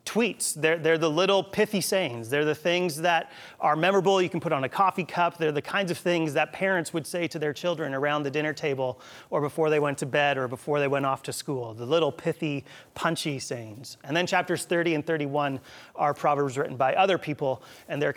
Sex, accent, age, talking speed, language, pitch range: male, American, 30-49, 225 wpm, English, 135-165 Hz